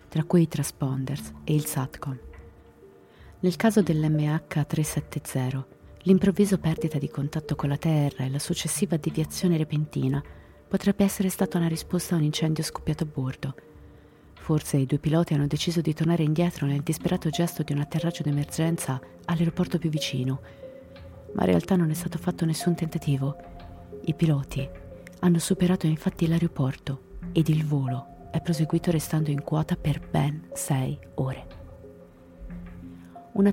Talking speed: 145 wpm